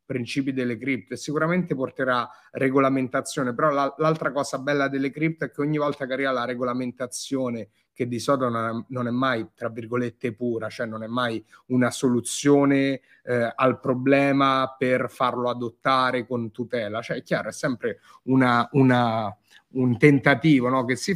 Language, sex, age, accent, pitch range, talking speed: Italian, male, 30-49, native, 120-145 Hz, 155 wpm